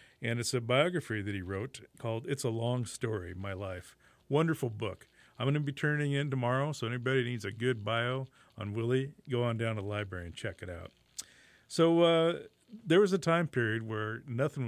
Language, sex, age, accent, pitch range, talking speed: English, male, 50-69, American, 100-130 Hz, 205 wpm